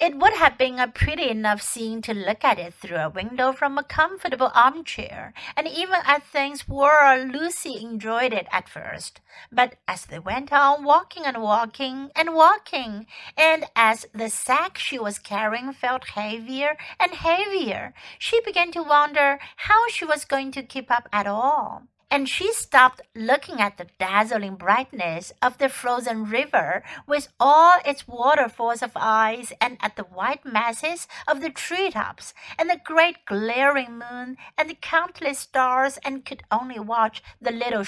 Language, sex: Chinese, female